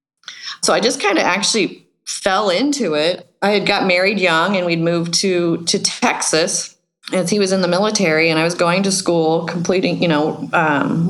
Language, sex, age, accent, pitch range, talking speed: English, female, 30-49, American, 175-210 Hz, 195 wpm